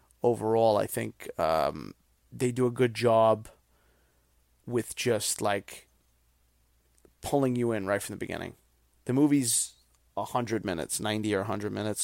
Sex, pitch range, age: male, 100-120 Hz, 30-49